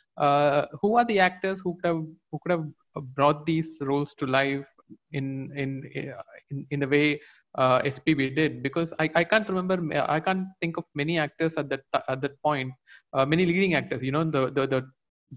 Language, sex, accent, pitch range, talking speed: English, male, Indian, 135-165 Hz, 190 wpm